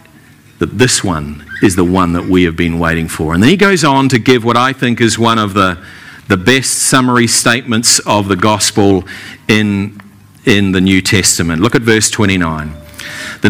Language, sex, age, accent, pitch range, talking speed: English, male, 50-69, Australian, 105-135 Hz, 190 wpm